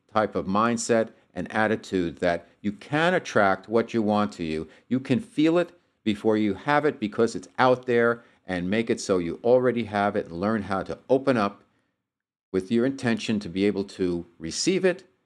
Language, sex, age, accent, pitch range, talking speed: English, male, 50-69, American, 95-125 Hz, 195 wpm